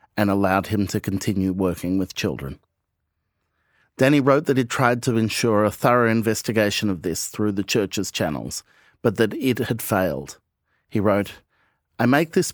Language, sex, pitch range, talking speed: English, male, 95-120 Hz, 165 wpm